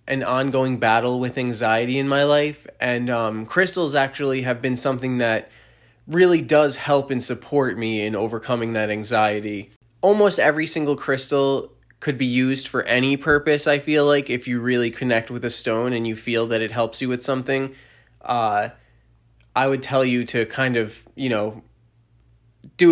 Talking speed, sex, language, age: 175 wpm, male, English, 20-39